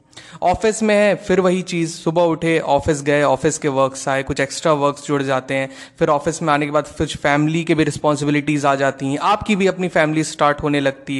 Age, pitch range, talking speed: 20-39, 145-200 Hz, 220 wpm